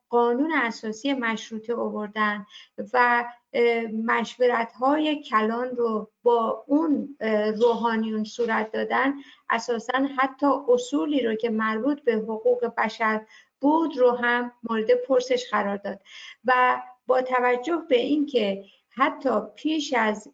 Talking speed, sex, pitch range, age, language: 110 wpm, female, 220-260 Hz, 50-69, Persian